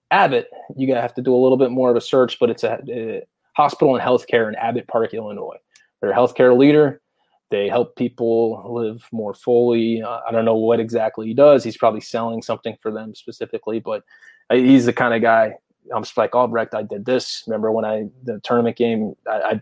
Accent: American